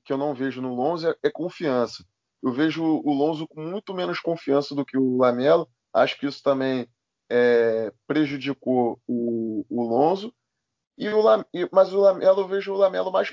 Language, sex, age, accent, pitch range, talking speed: Portuguese, male, 20-39, Brazilian, 125-155 Hz, 165 wpm